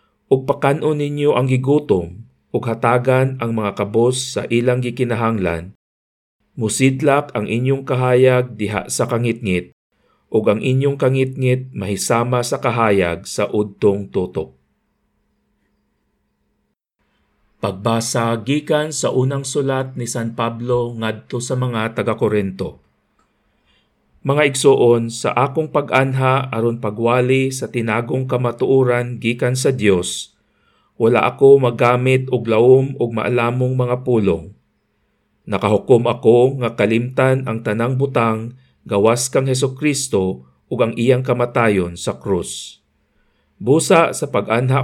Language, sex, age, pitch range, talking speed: Filipino, male, 50-69, 110-130 Hz, 110 wpm